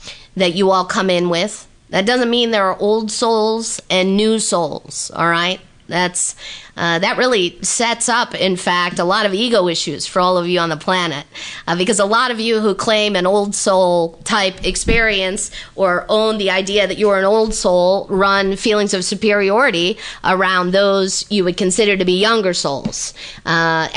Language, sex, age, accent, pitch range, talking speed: English, female, 40-59, American, 175-210 Hz, 185 wpm